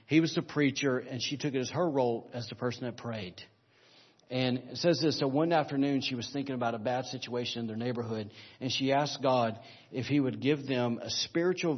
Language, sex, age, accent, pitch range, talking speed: English, male, 40-59, American, 115-135 Hz, 225 wpm